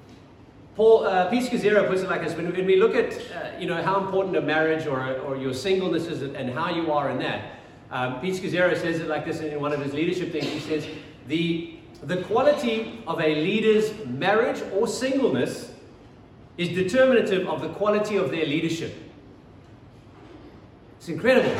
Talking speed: 185 wpm